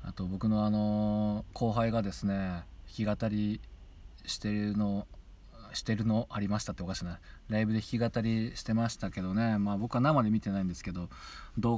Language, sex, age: Japanese, male, 20-39